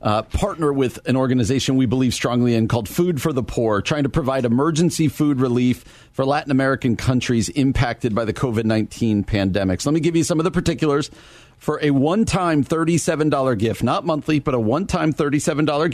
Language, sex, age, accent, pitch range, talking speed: English, male, 40-59, American, 120-155 Hz, 180 wpm